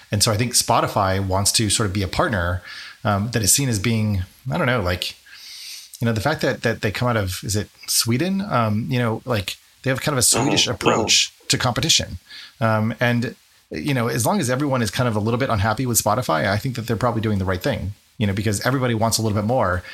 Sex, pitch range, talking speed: male, 100-120 Hz, 250 wpm